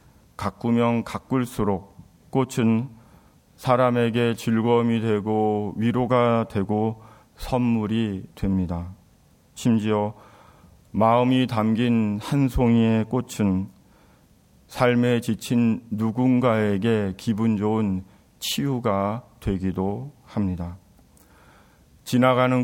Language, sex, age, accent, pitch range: Korean, male, 40-59, native, 100-120 Hz